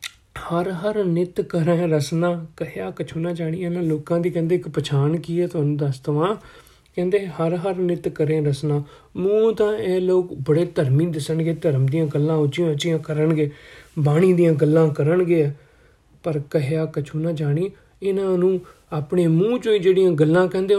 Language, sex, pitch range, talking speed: Punjabi, male, 155-195 Hz, 155 wpm